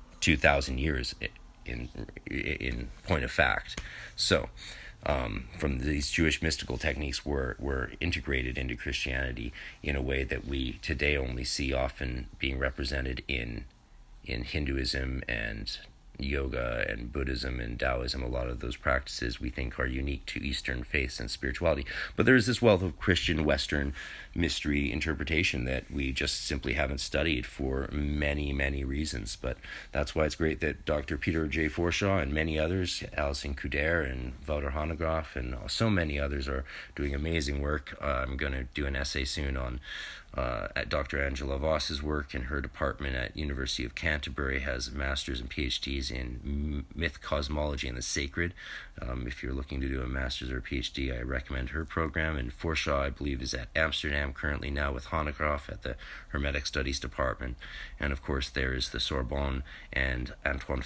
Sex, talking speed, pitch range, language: male, 170 wpm, 65-75 Hz, English